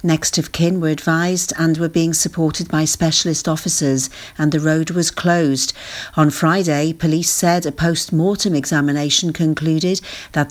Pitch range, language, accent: 155-195 Hz, English, British